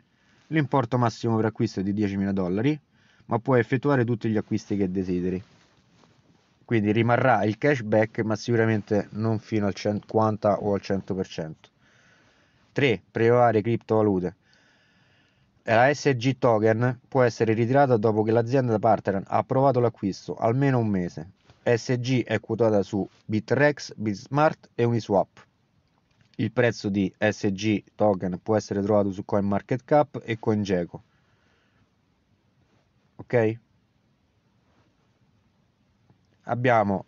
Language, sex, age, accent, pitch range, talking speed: Italian, male, 30-49, native, 100-120 Hz, 115 wpm